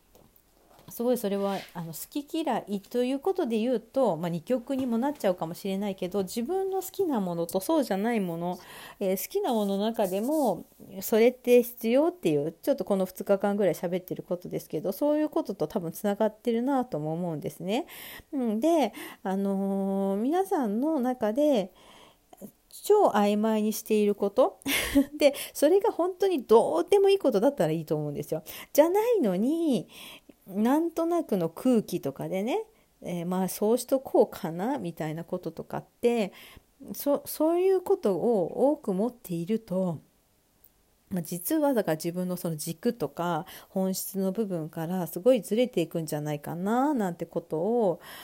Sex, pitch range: female, 180-265 Hz